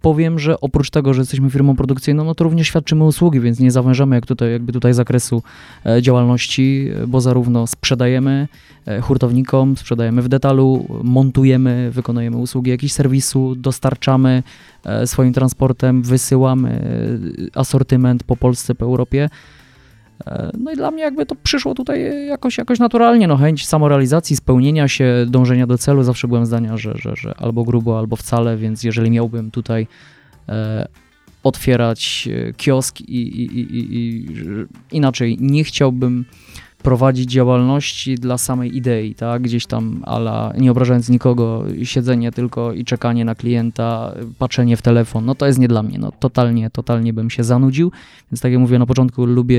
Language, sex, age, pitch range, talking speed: Polish, male, 20-39, 115-135 Hz, 150 wpm